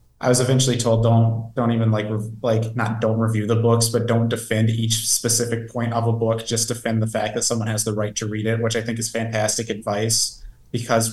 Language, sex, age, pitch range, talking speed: English, male, 20-39, 115-125 Hz, 225 wpm